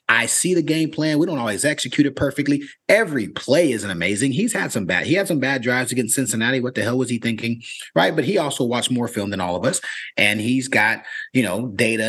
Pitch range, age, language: 110-145 Hz, 30-49, English